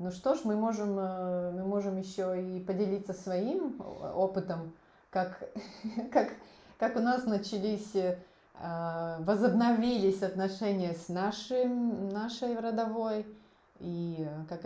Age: 20-39